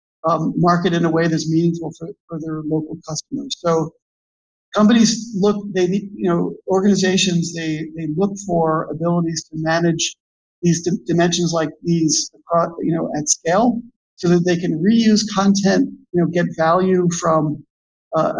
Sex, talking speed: male, 150 wpm